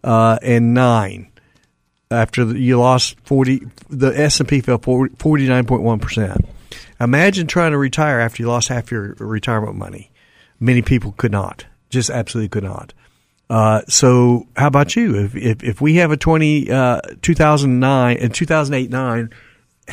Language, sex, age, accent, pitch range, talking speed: English, male, 50-69, American, 115-140 Hz, 135 wpm